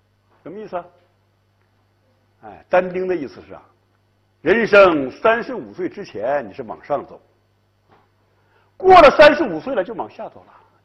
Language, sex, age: Chinese, male, 60-79